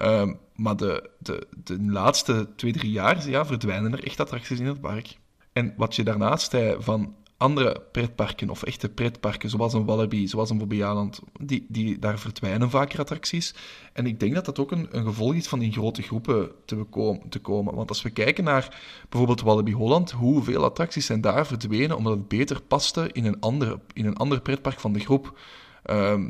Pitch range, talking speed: 105-130 Hz, 190 wpm